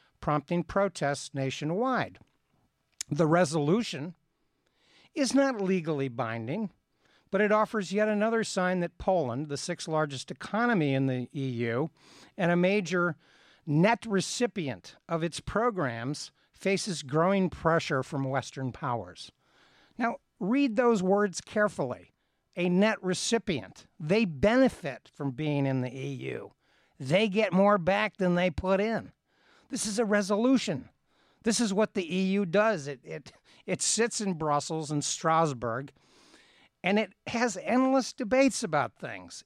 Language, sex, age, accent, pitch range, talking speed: English, male, 60-79, American, 145-210 Hz, 130 wpm